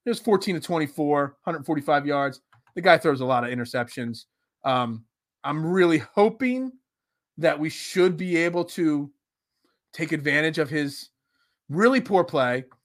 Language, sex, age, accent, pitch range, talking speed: English, male, 30-49, American, 130-180 Hz, 165 wpm